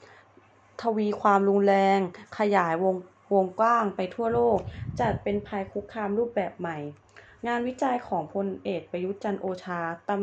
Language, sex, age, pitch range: Thai, female, 20-39, 175-220 Hz